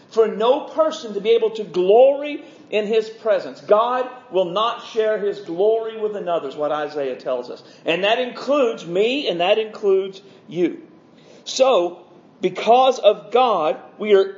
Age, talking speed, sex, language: 50-69, 160 wpm, male, English